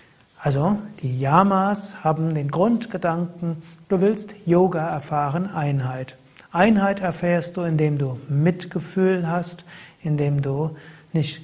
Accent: German